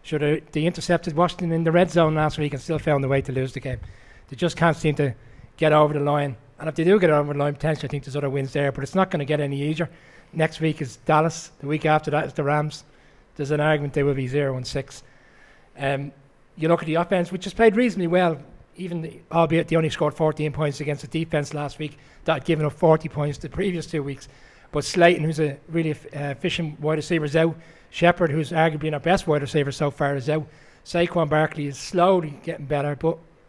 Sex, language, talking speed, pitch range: male, English, 240 wpm, 140-165 Hz